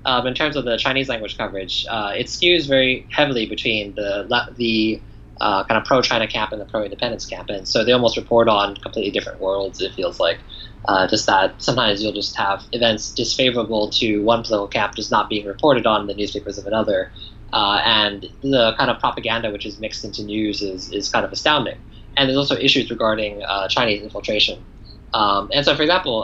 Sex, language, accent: male, English, American